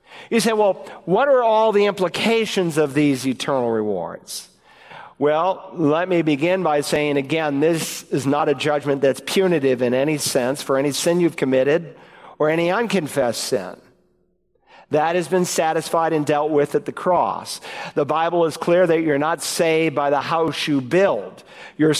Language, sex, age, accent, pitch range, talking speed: English, male, 50-69, American, 145-180 Hz, 170 wpm